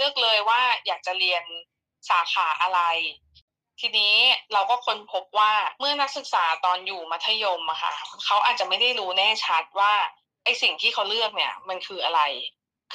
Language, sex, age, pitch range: Thai, female, 20-39, 185-260 Hz